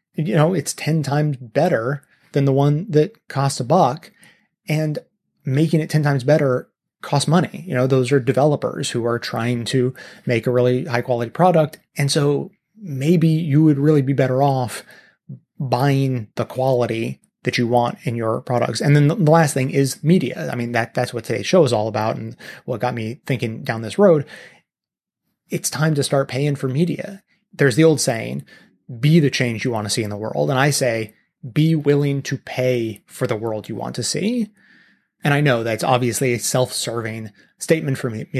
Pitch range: 120-150 Hz